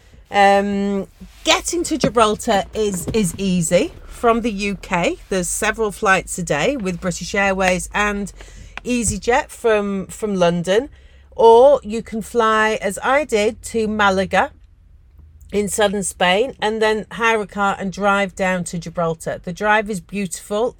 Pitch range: 185-225 Hz